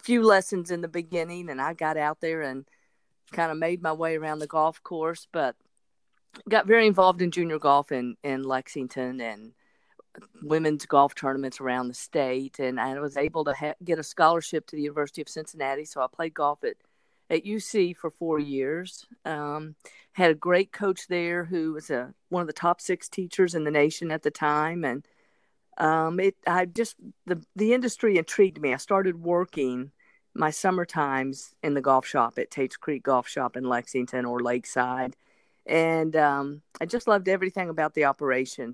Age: 50-69